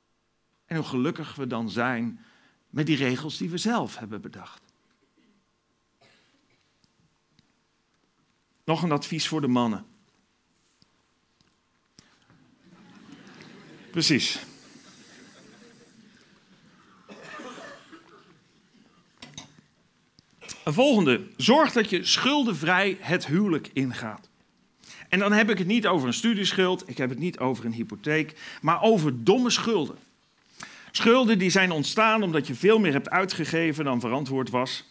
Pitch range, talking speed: 130-190 Hz, 110 wpm